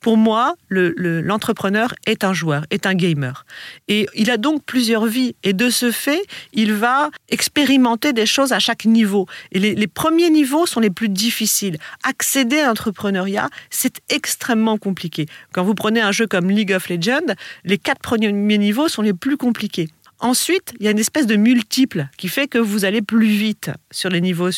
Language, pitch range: French, 185-245 Hz